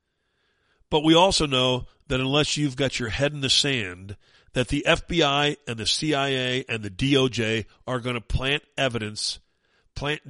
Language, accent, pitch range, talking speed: English, American, 110-145 Hz, 165 wpm